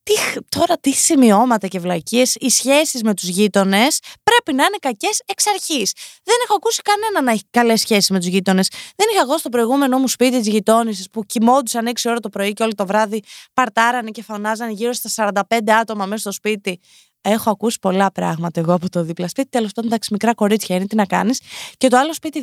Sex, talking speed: female, 210 wpm